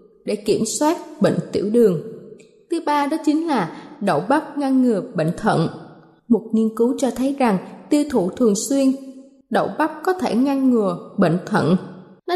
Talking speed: 175 wpm